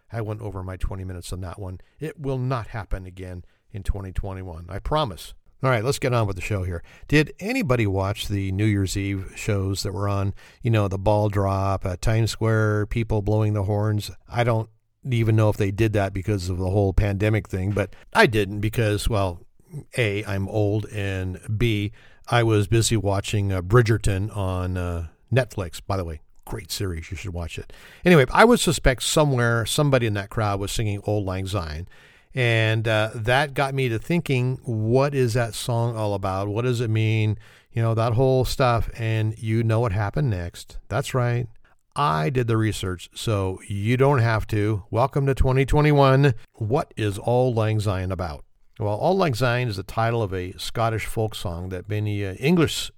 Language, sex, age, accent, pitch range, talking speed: English, male, 50-69, American, 100-120 Hz, 195 wpm